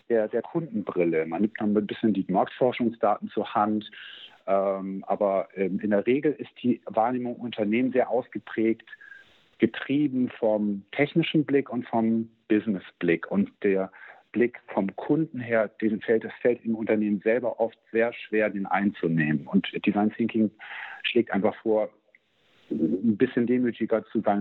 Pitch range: 100-120 Hz